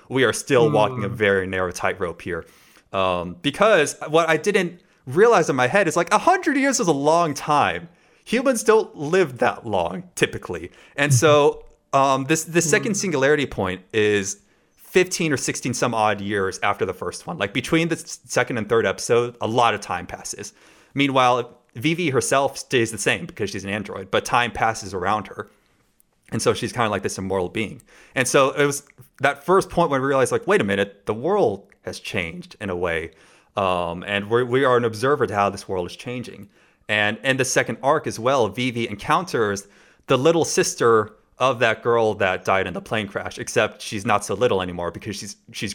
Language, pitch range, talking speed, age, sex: English, 100-160 Hz, 195 wpm, 30-49, male